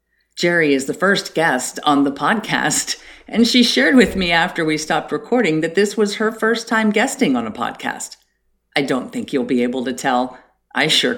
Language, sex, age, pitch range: English, female, 50-69, 150-220 Hz